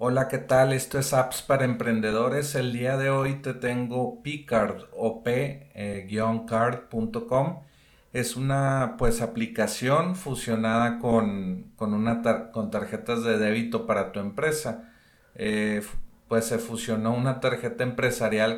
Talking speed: 115 wpm